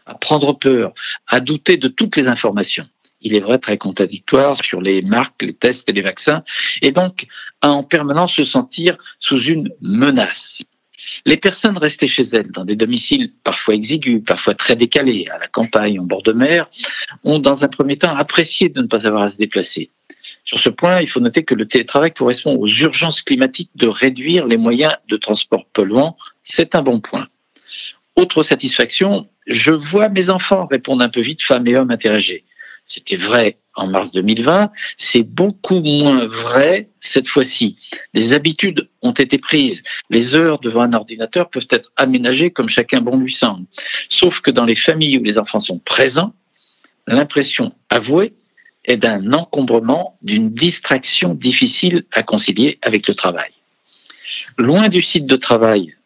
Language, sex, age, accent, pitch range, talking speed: French, male, 50-69, French, 115-175 Hz, 170 wpm